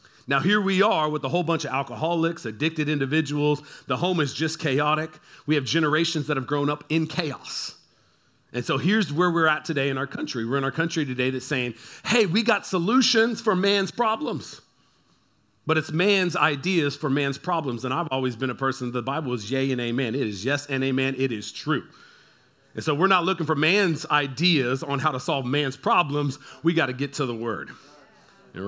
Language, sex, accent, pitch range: English, male, American, 130-170 Hz